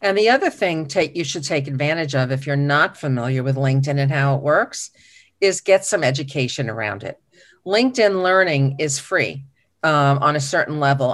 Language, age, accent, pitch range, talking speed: English, 50-69, American, 140-205 Hz, 185 wpm